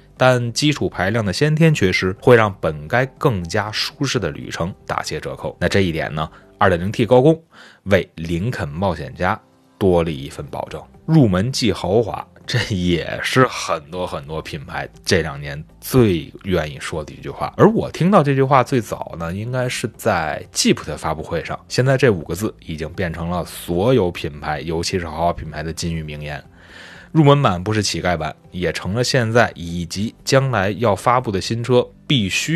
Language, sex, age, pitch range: Chinese, male, 20-39, 90-130 Hz